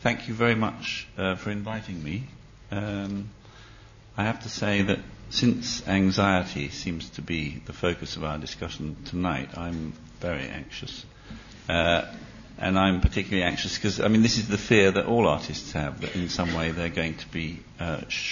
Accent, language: British, English